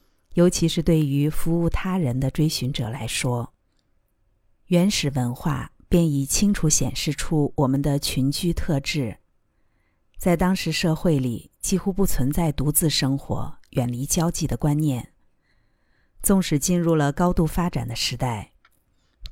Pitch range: 130-175 Hz